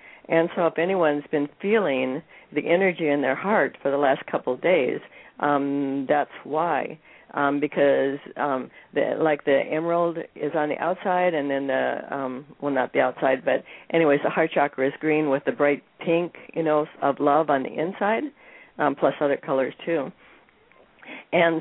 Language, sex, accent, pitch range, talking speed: English, female, American, 145-170 Hz, 175 wpm